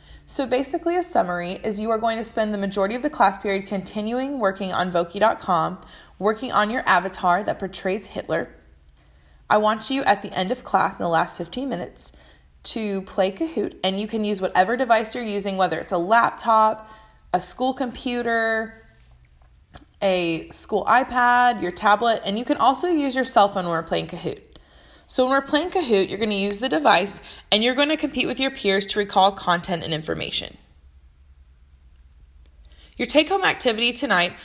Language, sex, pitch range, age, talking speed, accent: English, female, 180-245 Hz, 20-39, 180 wpm, American